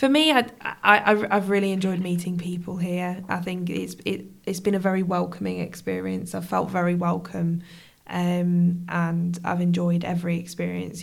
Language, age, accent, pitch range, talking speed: Danish, 20-39, British, 170-185 Hz, 165 wpm